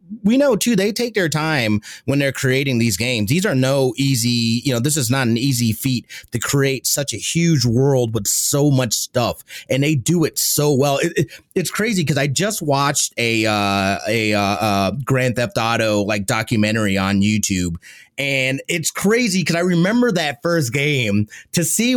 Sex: male